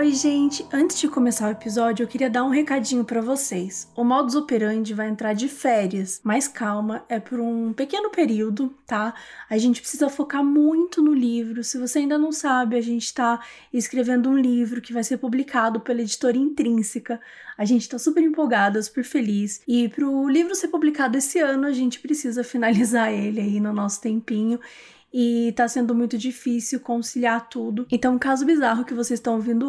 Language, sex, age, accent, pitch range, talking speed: Portuguese, female, 20-39, Brazilian, 225-275 Hz, 185 wpm